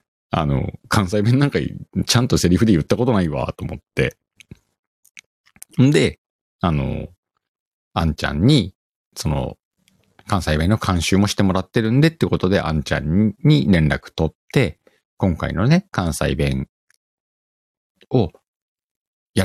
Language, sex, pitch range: Japanese, male, 80-115 Hz